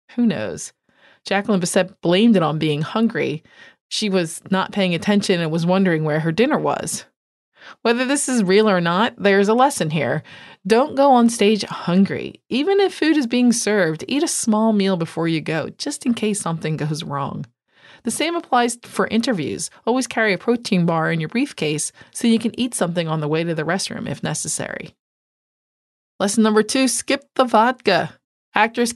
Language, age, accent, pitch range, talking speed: English, 30-49, American, 175-240 Hz, 180 wpm